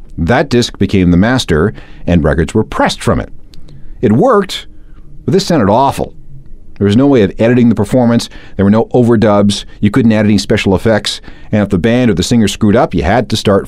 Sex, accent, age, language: male, American, 40-59, English